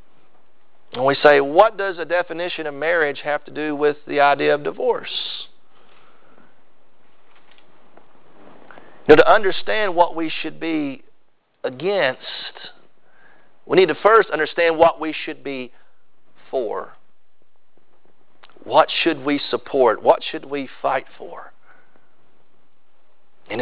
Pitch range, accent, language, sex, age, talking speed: 150-250 Hz, American, English, male, 40-59, 110 wpm